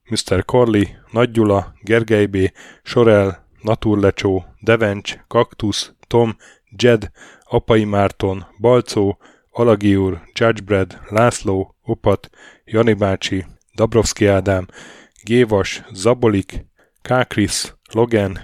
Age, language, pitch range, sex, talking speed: 10-29, Hungarian, 100-115 Hz, male, 90 wpm